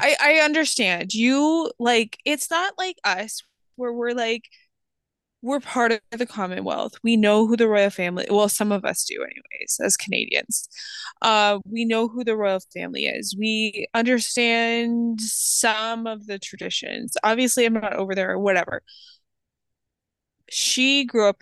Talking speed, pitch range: 155 wpm, 220-300 Hz